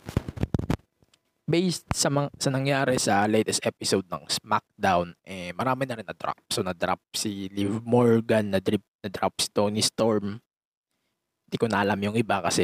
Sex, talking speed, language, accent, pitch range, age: male, 150 wpm, English, Filipino, 100-140 Hz, 20-39